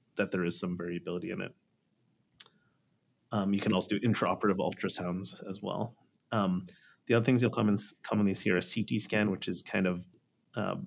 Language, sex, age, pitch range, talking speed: English, male, 30-49, 95-115 Hz, 190 wpm